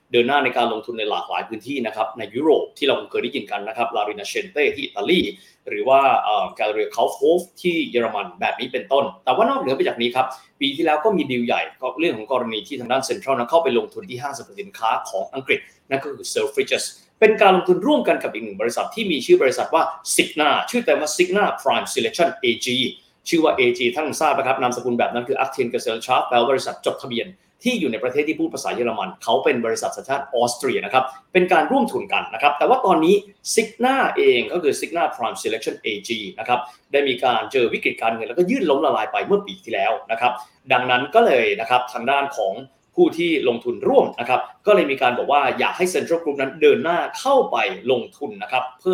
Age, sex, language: 20-39, male, Thai